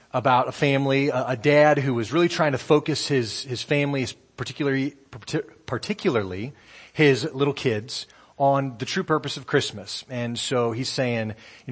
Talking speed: 155 wpm